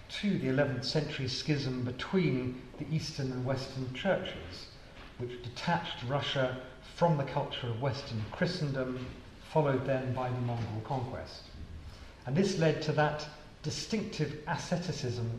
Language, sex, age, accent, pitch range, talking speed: English, male, 40-59, British, 125-155 Hz, 130 wpm